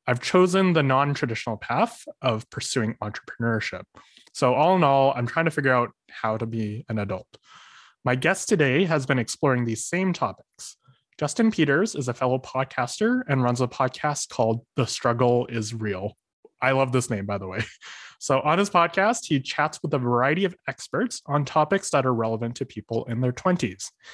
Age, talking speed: 20-39, 185 wpm